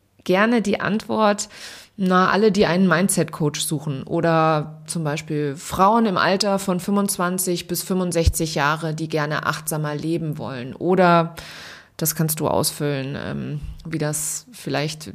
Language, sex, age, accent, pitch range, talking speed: German, female, 20-39, German, 160-195 Hz, 130 wpm